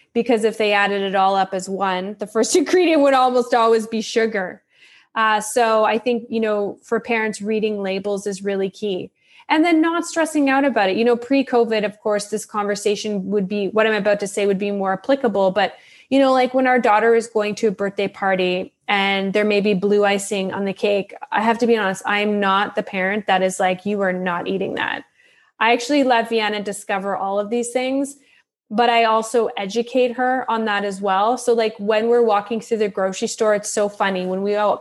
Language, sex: English, female